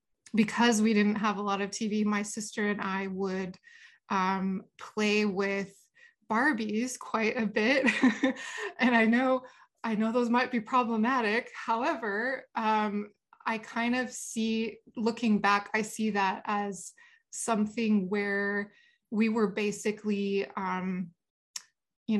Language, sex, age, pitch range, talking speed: English, female, 20-39, 205-235 Hz, 130 wpm